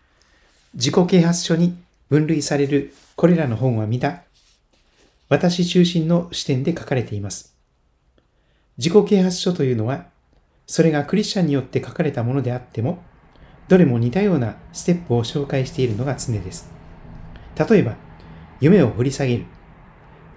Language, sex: Japanese, male